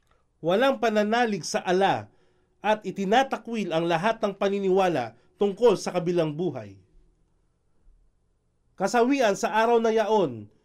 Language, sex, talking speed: Filipino, male, 105 wpm